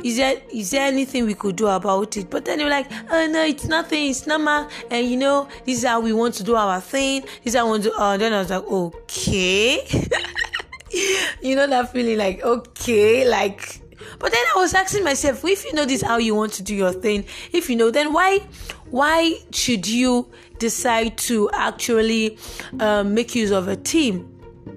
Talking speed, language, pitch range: 215 wpm, English, 205-260 Hz